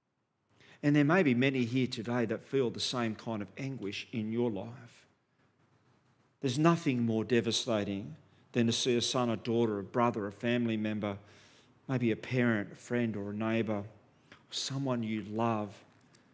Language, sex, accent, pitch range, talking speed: English, male, Australian, 110-135 Hz, 160 wpm